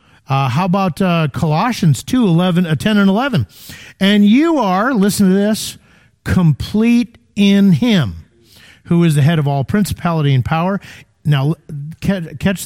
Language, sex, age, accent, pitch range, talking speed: English, male, 50-69, American, 135-200 Hz, 135 wpm